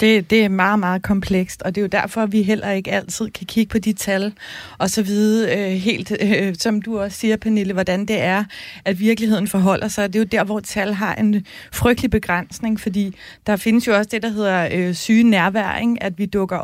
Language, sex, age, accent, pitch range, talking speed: Danish, female, 30-49, native, 195-225 Hz, 225 wpm